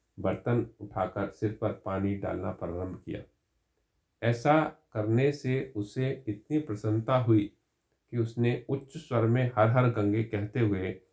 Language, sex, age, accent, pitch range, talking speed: Hindi, male, 50-69, native, 95-120 Hz, 135 wpm